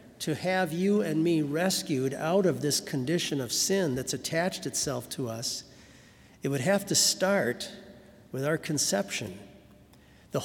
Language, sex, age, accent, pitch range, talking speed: English, male, 50-69, American, 135-175 Hz, 150 wpm